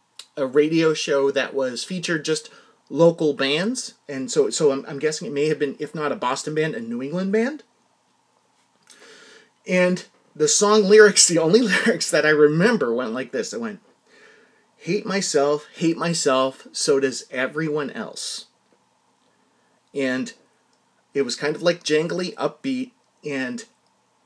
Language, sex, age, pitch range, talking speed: English, male, 30-49, 150-225 Hz, 150 wpm